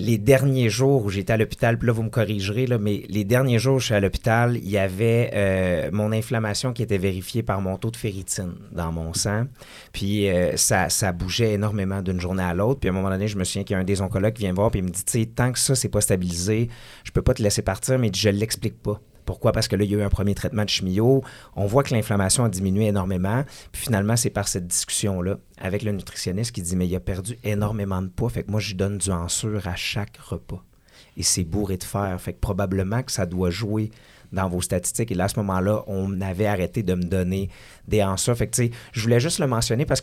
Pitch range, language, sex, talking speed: 95-120 Hz, French, male, 260 wpm